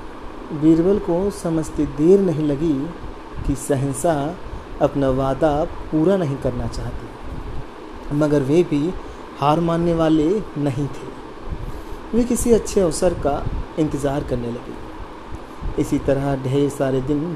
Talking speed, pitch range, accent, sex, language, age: 120 wpm, 140-195 Hz, native, male, Hindi, 40-59